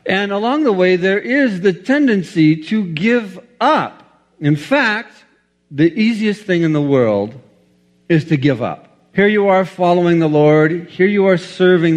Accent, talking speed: American, 165 wpm